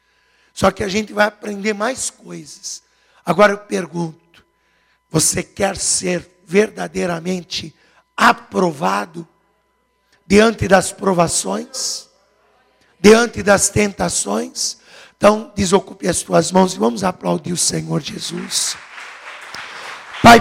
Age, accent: 60-79, Brazilian